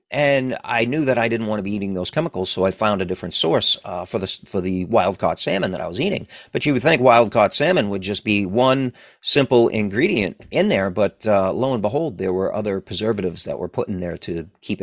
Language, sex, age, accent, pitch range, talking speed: English, male, 40-59, American, 100-135 Hz, 245 wpm